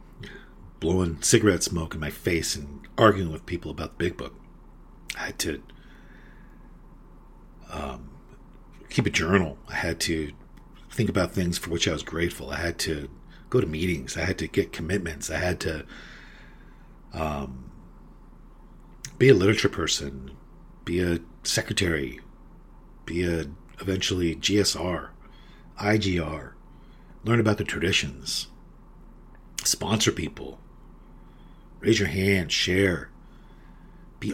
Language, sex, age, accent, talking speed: English, male, 50-69, American, 120 wpm